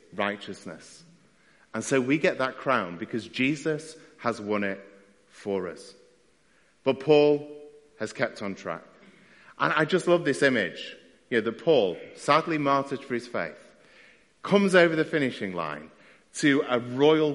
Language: English